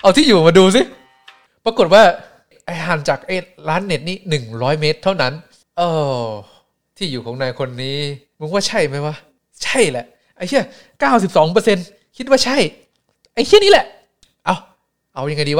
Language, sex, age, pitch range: Thai, male, 20-39, 125-165 Hz